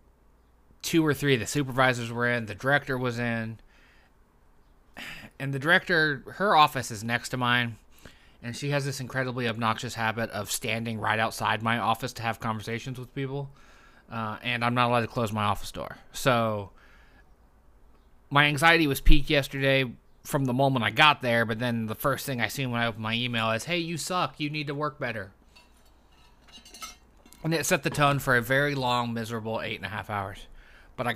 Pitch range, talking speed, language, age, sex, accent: 110-135 Hz, 190 wpm, English, 20-39, male, American